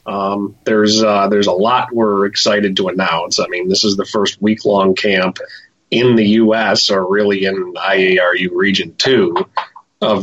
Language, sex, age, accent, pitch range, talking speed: English, male, 30-49, American, 100-120 Hz, 175 wpm